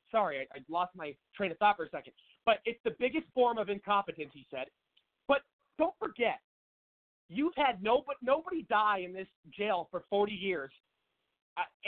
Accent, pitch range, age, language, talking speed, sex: American, 185-255 Hz, 30-49, English, 180 wpm, male